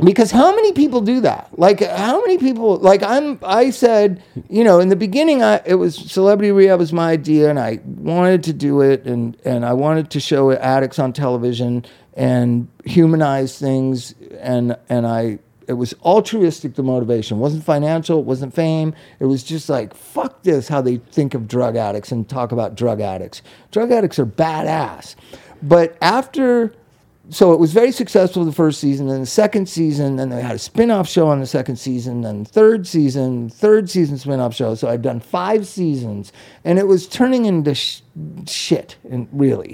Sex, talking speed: male, 190 wpm